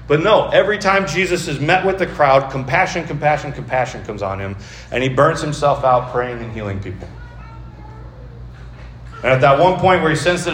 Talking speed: 195 wpm